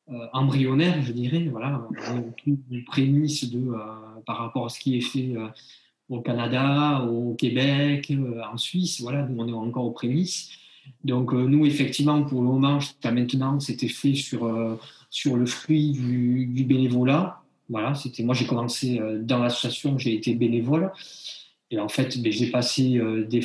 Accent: French